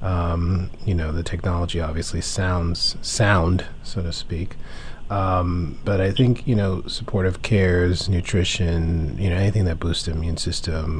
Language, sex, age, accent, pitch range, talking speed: English, male, 30-49, American, 85-100 Hz, 155 wpm